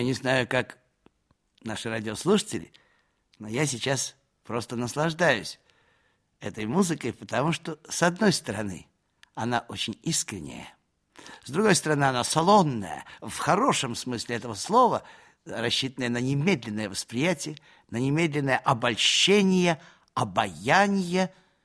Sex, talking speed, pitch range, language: male, 110 wpm, 110-140 Hz, Russian